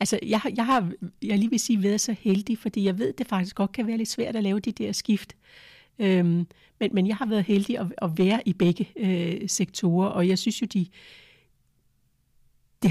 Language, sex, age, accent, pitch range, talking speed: Danish, female, 60-79, native, 160-200 Hz, 225 wpm